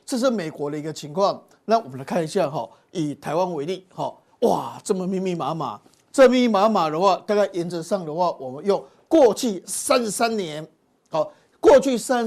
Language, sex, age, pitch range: Chinese, male, 50-69, 170-220 Hz